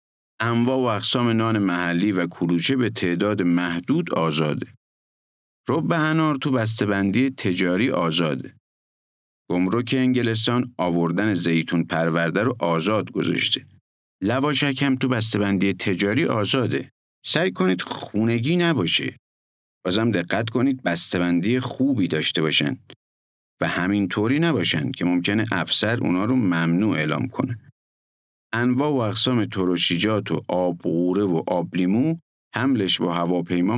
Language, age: Persian, 50-69